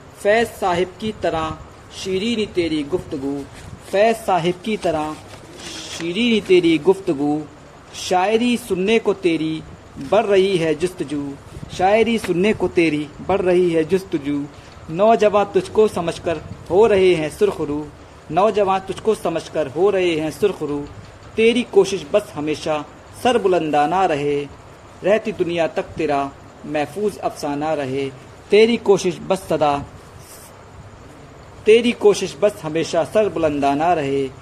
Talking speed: 120 wpm